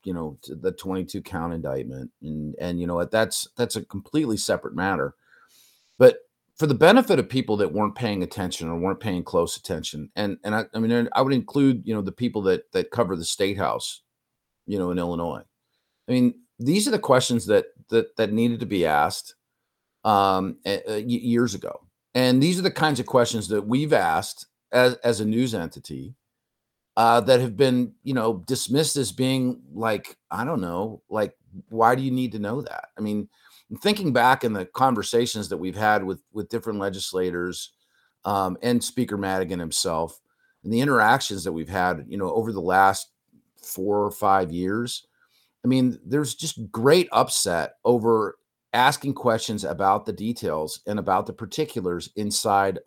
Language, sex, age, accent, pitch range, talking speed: English, male, 40-59, American, 95-125 Hz, 175 wpm